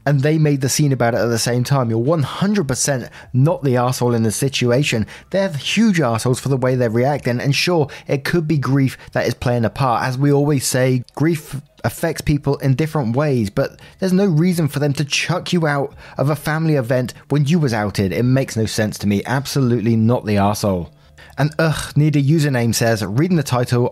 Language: English